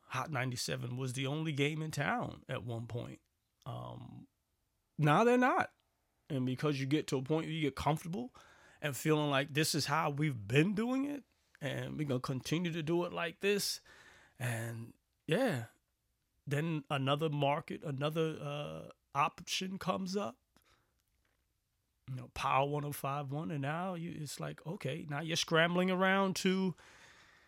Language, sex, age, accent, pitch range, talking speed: English, male, 30-49, American, 140-185 Hz, 155 wpm